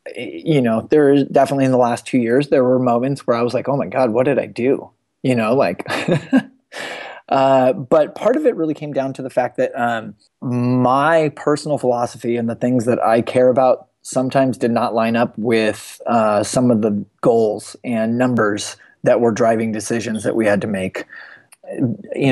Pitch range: 115-130 Hz